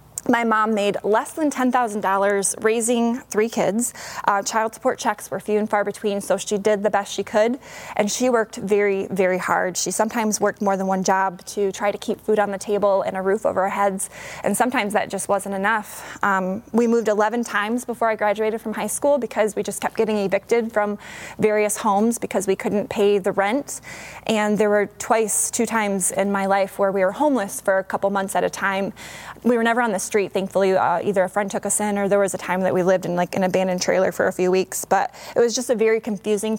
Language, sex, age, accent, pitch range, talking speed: English, female, 20-39, American, 195-225 Hz, 235 wpm